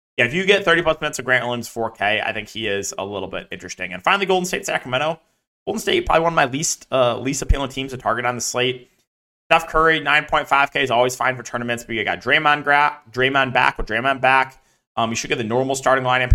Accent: American